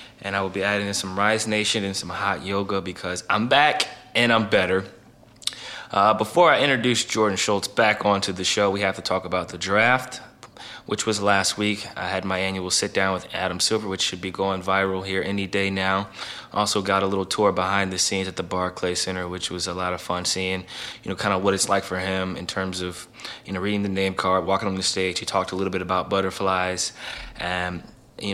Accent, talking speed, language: American, 230 wpm, English